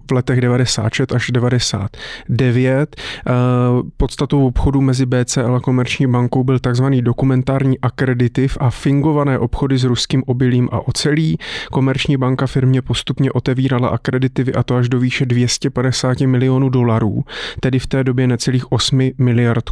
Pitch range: 125-135 Hz